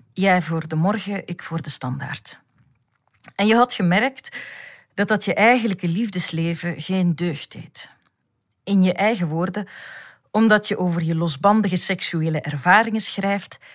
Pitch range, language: 155-205 Hz, Dutch